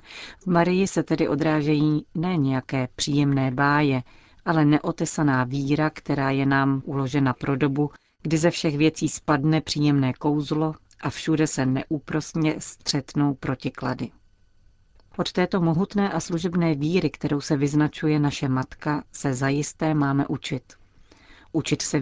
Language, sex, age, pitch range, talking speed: Czech, female, 40-59, 135-155 Hz, 130 wpm